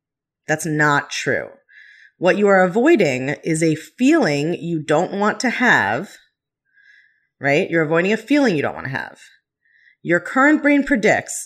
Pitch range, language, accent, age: 150-220 Hz, English, American, 30-49